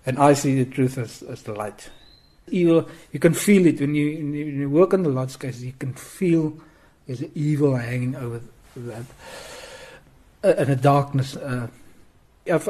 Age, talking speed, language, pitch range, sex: 60-79, 175 wpm, English, 125-155 Hz, male